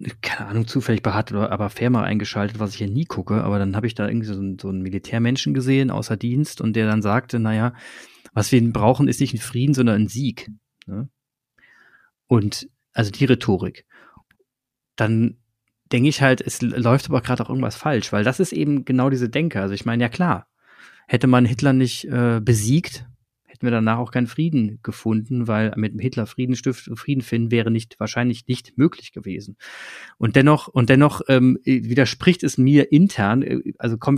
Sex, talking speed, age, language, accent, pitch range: male, 185 wpm, 30-49, German, German, 110-135 Hz